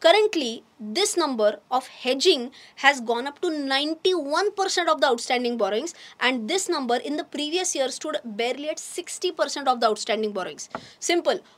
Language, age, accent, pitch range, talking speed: English, 20-39, Indian, 245-340 Hz, 155 wpm